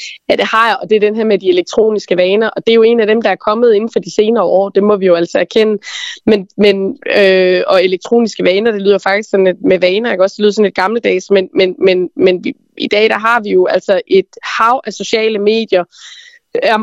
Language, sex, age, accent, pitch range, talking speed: Danish, female, 20-39, native, 195-235 Hz, 260 wpm